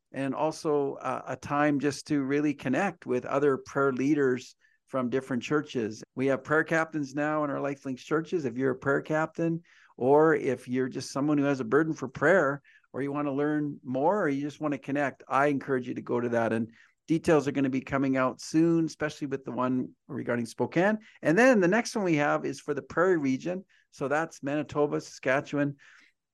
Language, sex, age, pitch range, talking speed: English, male, 50-69, 130-150 Hz, 205 wpm